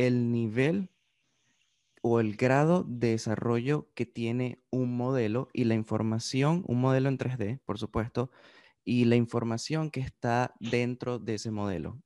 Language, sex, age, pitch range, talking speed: Spanish, male, 20-39, 105-125 Hz, 145 wpm